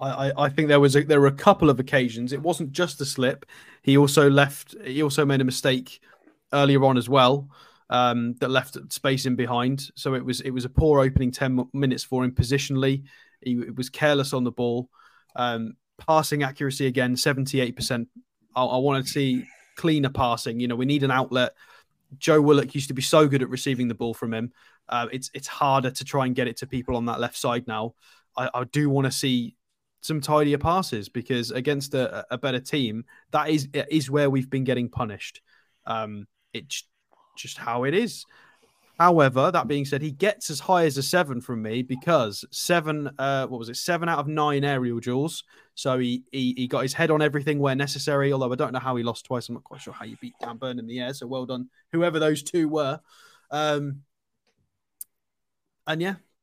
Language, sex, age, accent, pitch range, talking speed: English, male, 20-39, British, 125-150 Hz, 210 wpm